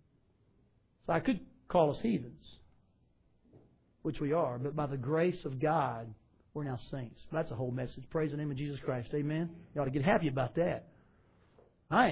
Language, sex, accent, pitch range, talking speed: English, male, American, 165-230 Hz, 185 wpm